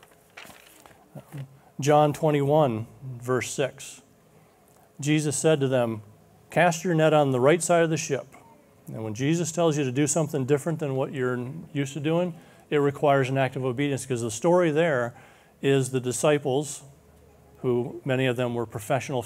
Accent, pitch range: American, 125-145 Hz